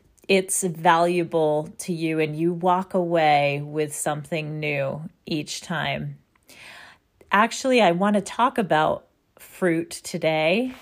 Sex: female